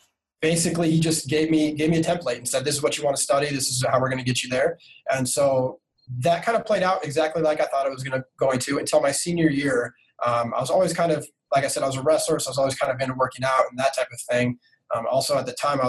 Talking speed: 305 wpm